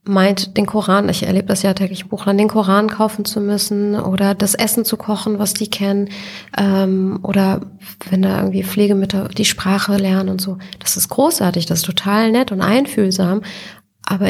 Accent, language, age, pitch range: German, German, 30-49, 185-210 Hz